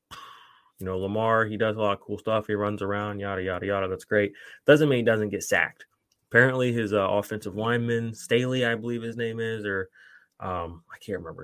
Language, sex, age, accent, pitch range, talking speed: English, male, 20-39, American, 100-125 Hz, 210 wpm